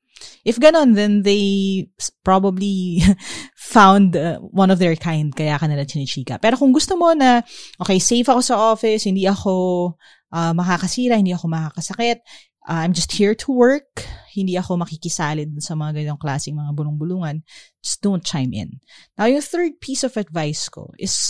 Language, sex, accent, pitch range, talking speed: English, female, Filipino, 165-225 Hz, 165 wpm